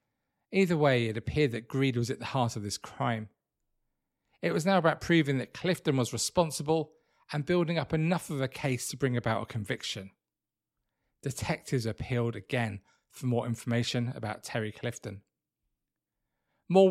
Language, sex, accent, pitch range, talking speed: English, male, British, 115-150 Hz, 155 wpm